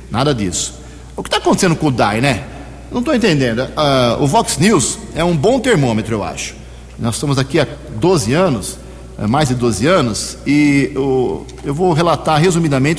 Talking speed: 180 wpm